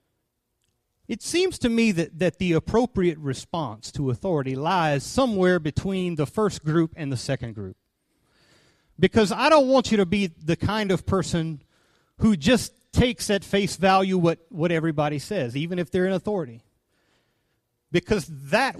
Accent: American